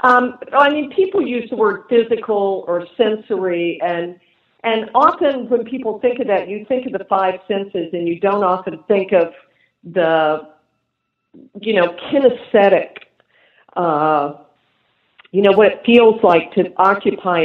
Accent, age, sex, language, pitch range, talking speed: American, 50-69, female, English, 160-205 Hz, 150 wpm